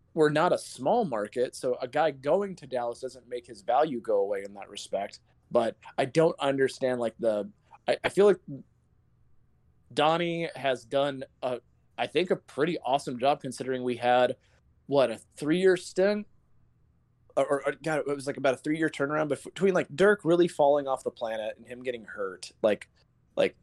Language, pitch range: English, 120-160 Hz